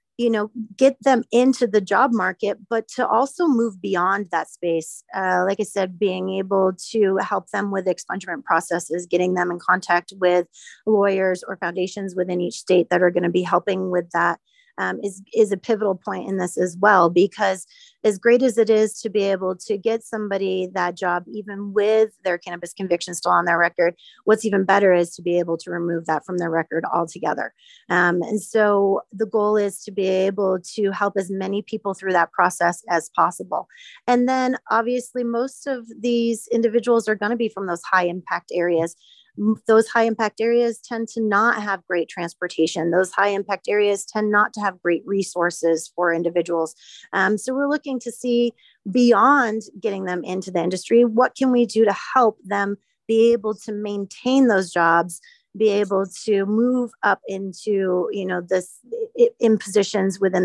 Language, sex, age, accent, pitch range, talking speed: English, female, 30-49, American, 180-225 Hz, 185 wpm